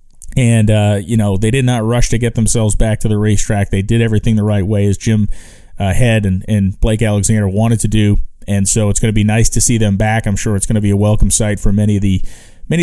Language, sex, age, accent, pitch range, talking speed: English, male, 30-49, American, 100-120 Hz, 265 wpm